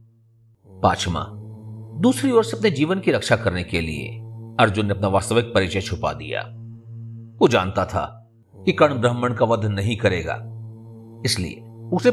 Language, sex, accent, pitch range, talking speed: Hindi, male, native, 100-115 Hz, 140 wpm